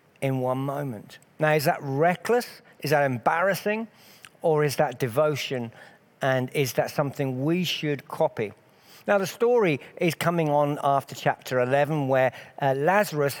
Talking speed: 150 wpm